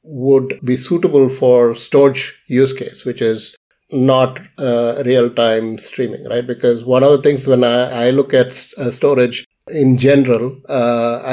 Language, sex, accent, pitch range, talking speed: English, male, Indian, 115-130 Hz, 150 wpm